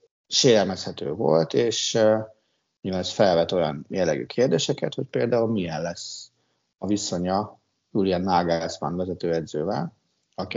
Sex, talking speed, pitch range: male, 115 wpm, 90-110 Hz